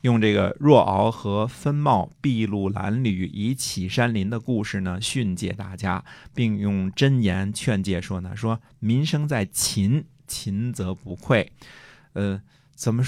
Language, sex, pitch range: Chinese, male, 95-135 Hz